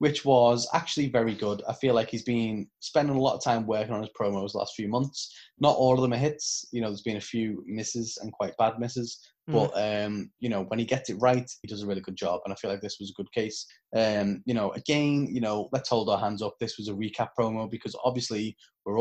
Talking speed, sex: 260 wpm, male